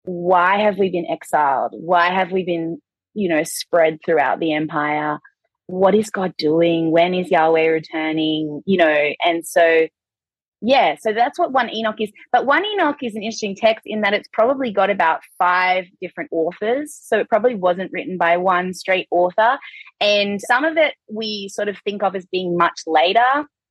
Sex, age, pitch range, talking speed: female, 20-39, 170-215 Hz, 180 wpm